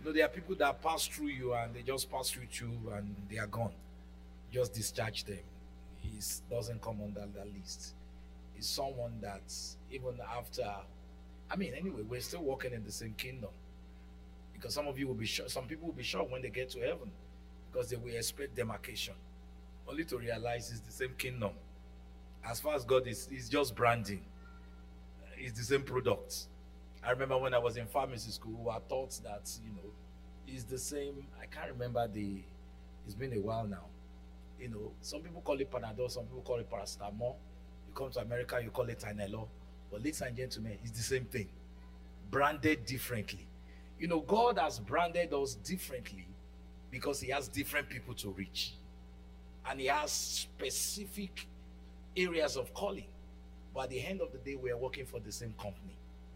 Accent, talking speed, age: Nigerian, 185 wpm, 50-69